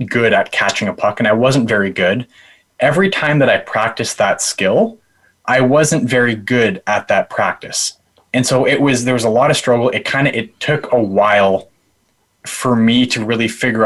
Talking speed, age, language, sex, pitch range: 200 wpm, 20-39, English, male, 100-125 Hz